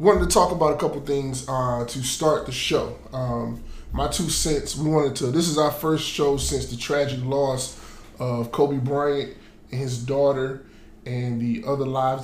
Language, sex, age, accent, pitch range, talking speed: English, male, 20-39, American, 115-135 Hz, 185 wpm